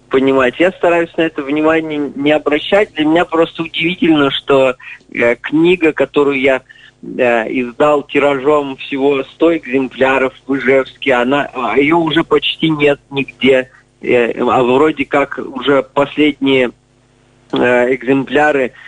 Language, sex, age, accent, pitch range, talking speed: Russian, male, 20-39, native, 130-160 Hz, 110 wpm